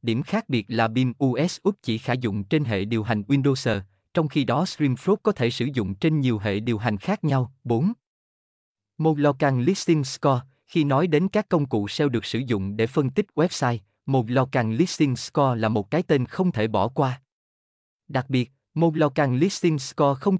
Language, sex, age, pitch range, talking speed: Vietnamese, male, 20-39, 115-155 Hz, 210 wpm